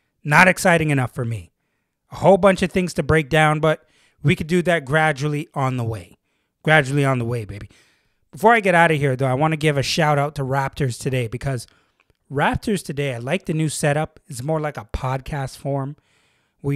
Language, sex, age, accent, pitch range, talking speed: English, male, 30-49, American, 130-155 Hz, 210 wpm